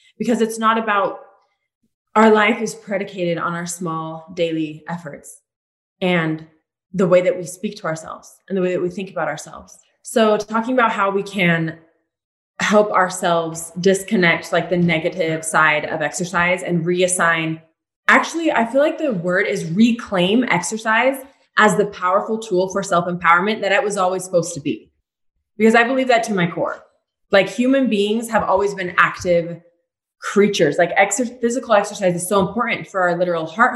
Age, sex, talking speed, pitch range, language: 20-39, female, 165 wpm, 170-210 Hz, English